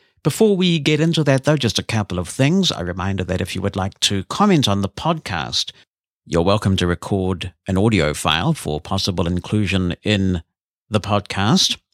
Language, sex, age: English, male, 50-69